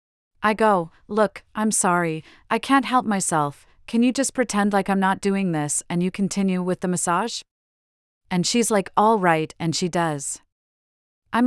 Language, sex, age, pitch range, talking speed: English, female, 40-59, 160-210 Hz, 175 wpm